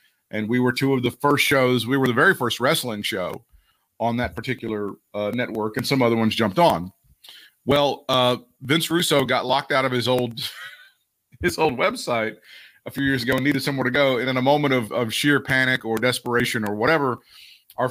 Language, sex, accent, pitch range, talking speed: English, male, American, 120-155 Hz, 205 wpm